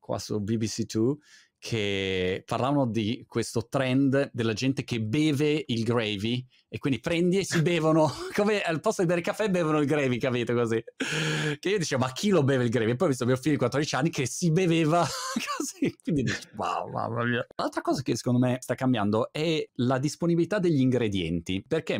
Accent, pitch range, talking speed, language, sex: native, 100-145 Hz, 200 wpm, Italian, male